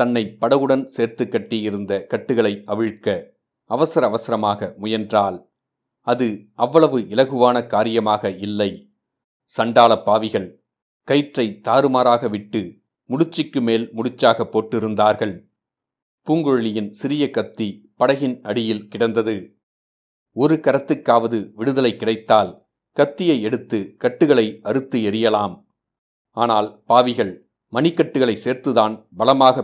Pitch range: 110-130 Hz